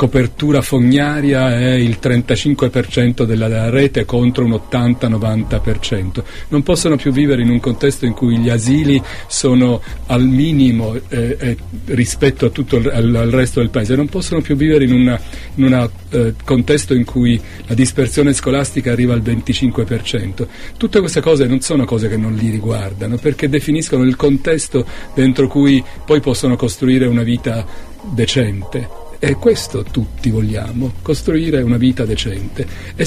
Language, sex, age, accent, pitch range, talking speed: Italian, male, 40-59, native, 115-135 Hz, 145 wpm